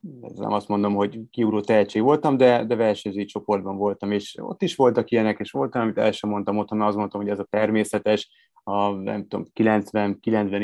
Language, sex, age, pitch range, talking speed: Hungarian, male, 30-49, 105-120 Hz, 185 wpm